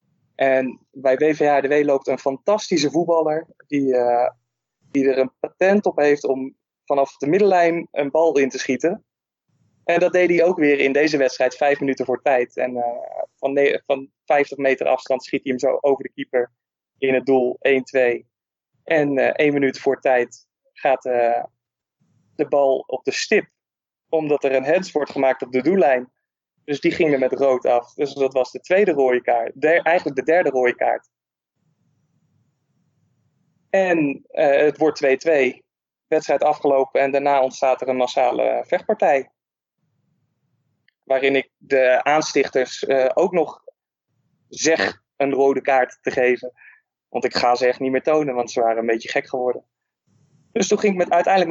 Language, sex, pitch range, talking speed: Dutch, male, 130-155 Hz, 165 wpm